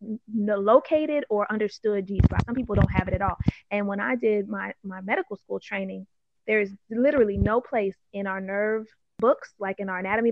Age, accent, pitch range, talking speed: 20-39, American, 190-220 Hz, 190 wpm